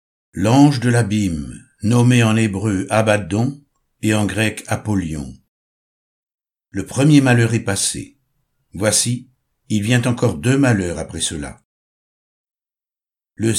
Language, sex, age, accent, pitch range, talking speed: French, male, 60-79, French, 100-130 Hz, 110 wpm